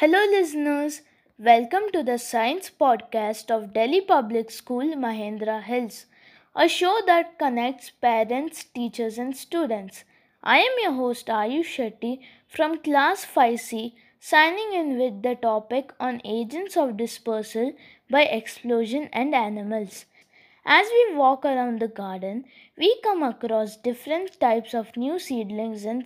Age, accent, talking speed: 20-39, Indian, 135 wpm